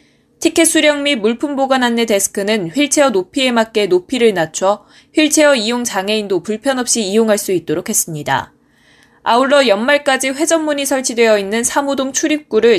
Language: Korean